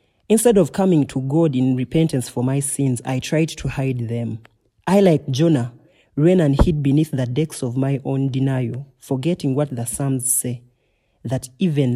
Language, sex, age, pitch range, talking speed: English, male, 30-49, 125-155 Hz, 175 wpm